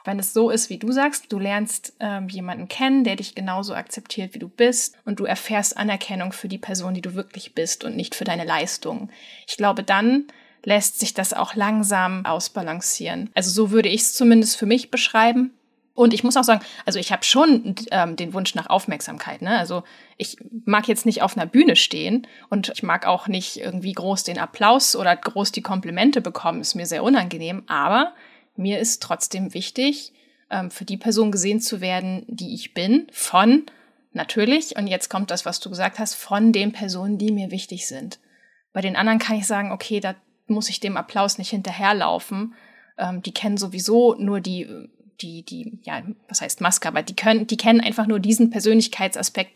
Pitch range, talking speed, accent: 190-235 Hz, 195 wpm, German